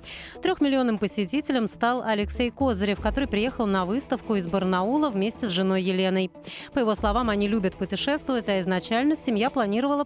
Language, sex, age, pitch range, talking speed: Russian, female, 30-49, 195-250 Hz, 150 wpm